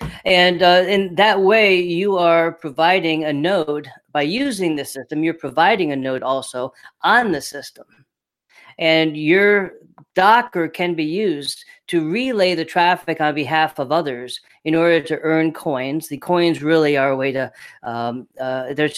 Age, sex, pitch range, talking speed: 40-59, female, 140-180 Hz, 160 wpm